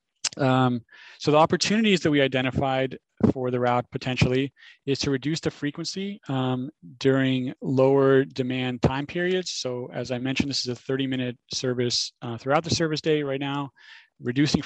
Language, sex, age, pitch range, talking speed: English, male, 30-49, 125-140 Hz, 160 wpm